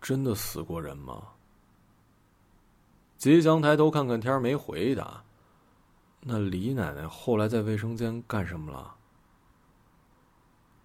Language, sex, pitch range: Chinese, male, 95-145 Hz